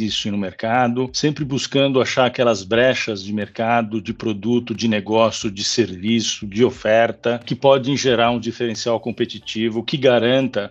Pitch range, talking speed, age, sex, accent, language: 110-130 Hz, 145 wpm, 50-69, male, Brazilian, Portuguese